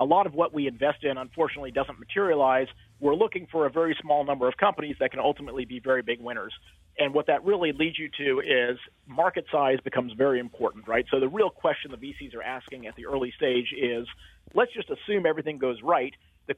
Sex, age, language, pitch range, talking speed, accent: male, 40-59, English, 130-165 Hz, 215 wpm, American